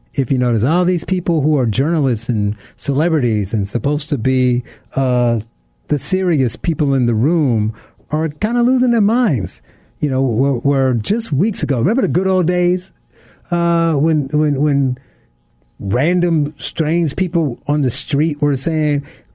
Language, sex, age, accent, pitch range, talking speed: English, male, 50-69, American, 115-155 Hz, 160 wpm